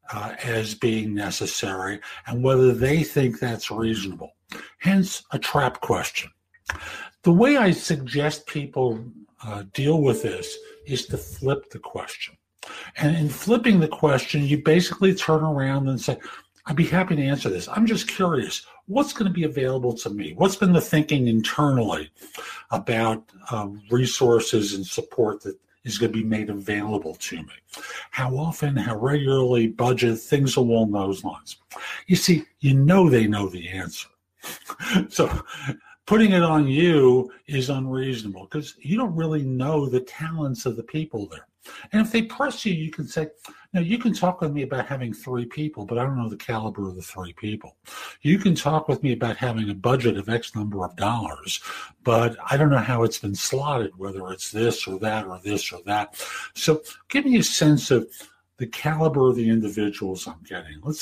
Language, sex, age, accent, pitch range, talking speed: English, male, 60-79, American, 115-160 Hz, 180 wpm